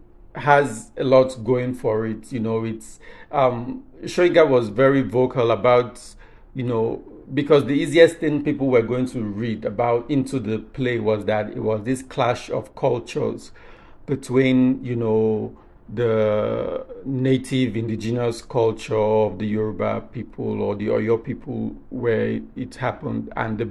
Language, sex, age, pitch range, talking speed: English, male, 50-69, 110-135 Hz, 145 wpm